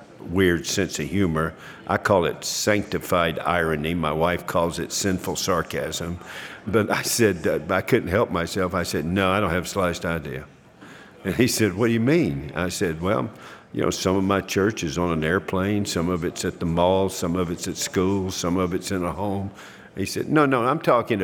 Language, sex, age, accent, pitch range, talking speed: English, male, 50-69, American, 85-100 Hz, 210 wpm